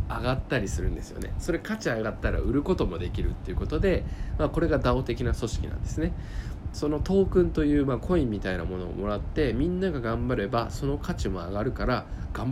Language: Japanese